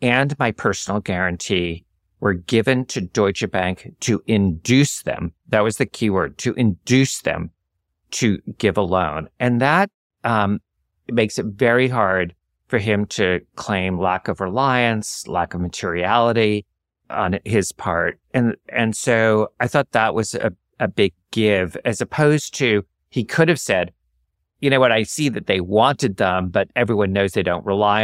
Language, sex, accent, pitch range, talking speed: English, male, American, 90-120 Hz, 165 wpm